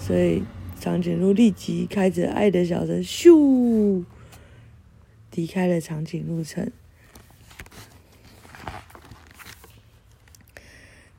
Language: Chinese